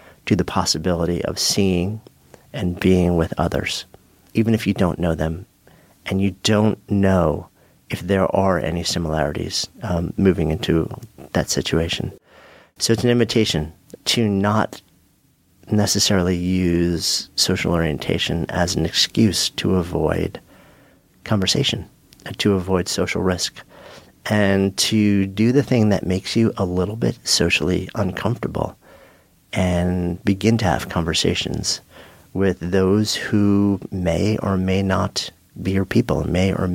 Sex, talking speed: male, 130 wpm